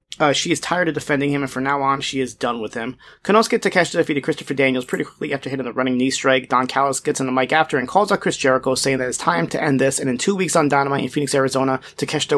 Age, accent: 30-49, American